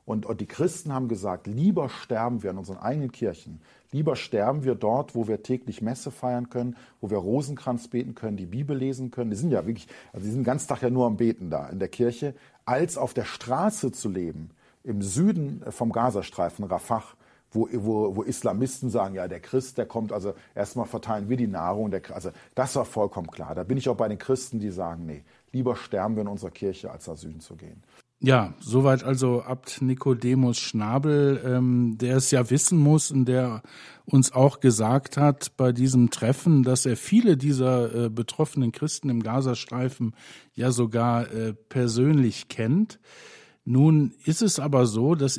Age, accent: 40-59, German